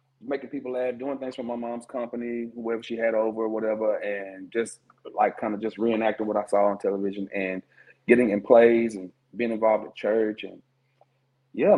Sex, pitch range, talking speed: male, 105-130 Hz, 195 wpm